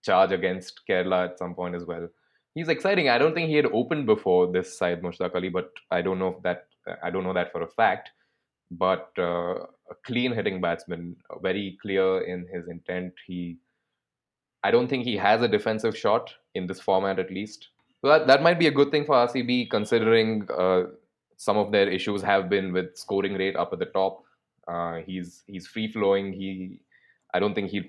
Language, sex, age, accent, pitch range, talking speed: English, male, 20-39, Indian, 90-110 Hz, 200 wpm